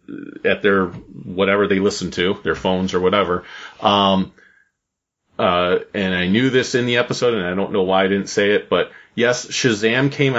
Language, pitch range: English, 95-120 Hz